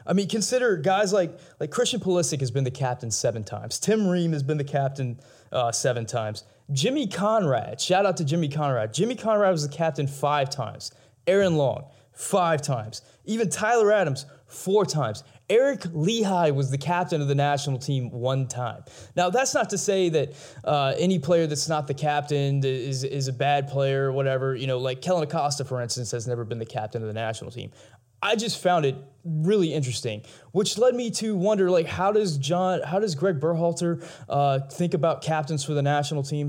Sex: male